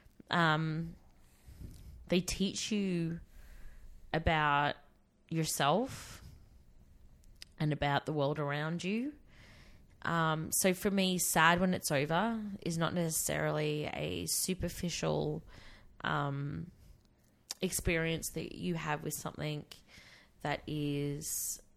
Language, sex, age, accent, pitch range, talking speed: English, female, 20-39, Australian, 145-170 Hz, 95 wpm